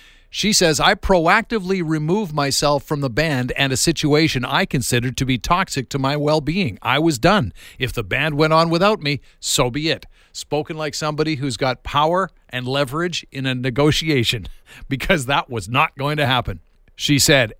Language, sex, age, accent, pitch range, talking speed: English, male, 50-69, American, 130-170 Hz, 180 wpm